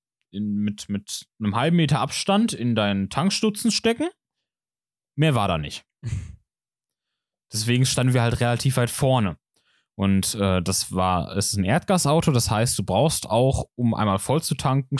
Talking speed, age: 160 wpm, 10-29